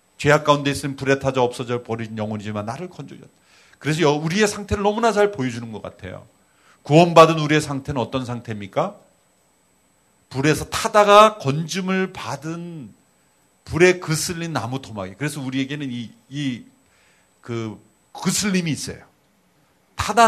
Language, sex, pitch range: Korean, male, 120-160 Hz